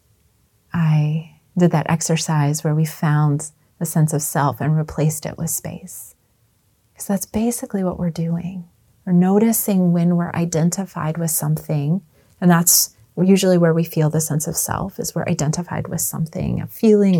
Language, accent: English, American